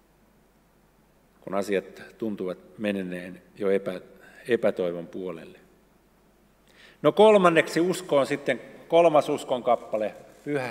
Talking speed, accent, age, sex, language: 90 wpm, native, 50-69, male, Finnish